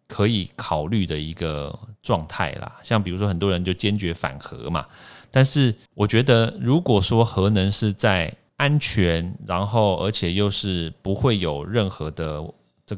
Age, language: 30-49, Chinese